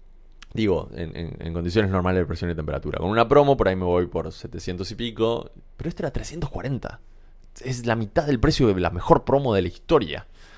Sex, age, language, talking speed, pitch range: male, 20-39, Spanish, 210 wpm, 90-135 Hz